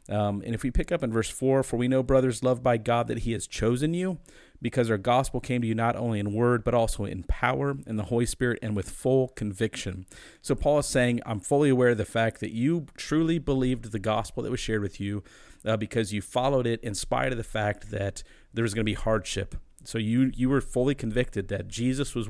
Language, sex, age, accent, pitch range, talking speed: English, male, 40-59, American, 105-125 Hz, 240 wpm